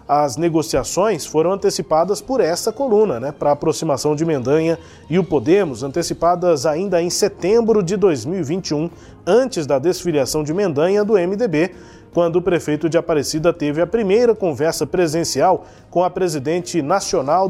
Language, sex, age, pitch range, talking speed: Portuguese, male, 20-39, 150-190 Hz, 145 wpm